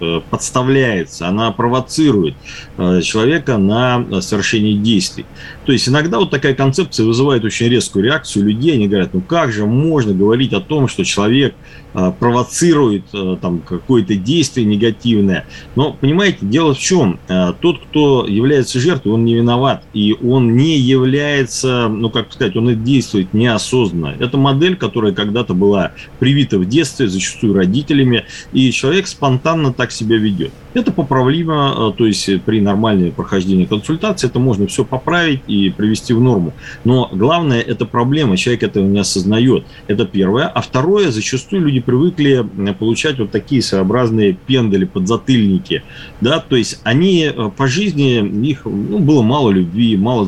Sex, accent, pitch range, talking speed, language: male, native, 100-135 Hz, 145 wpm, Russian